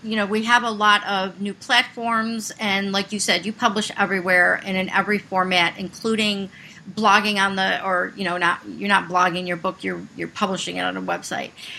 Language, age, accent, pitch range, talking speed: English, 40-59, American, 190-230 Hz, 210 wpm